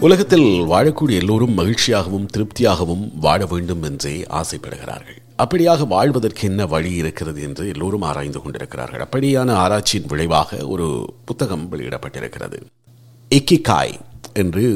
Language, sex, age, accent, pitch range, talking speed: Tamil, male, 50-69, native, 85-120 Hz, 100 wpm